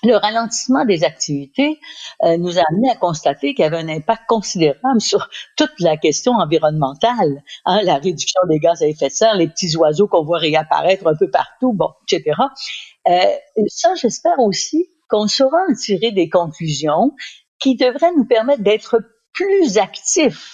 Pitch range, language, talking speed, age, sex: 165-245 Hz, French, 170 wpm, 60-79, female